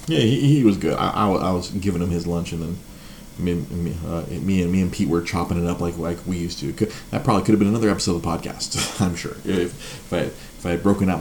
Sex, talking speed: male, 280 wpm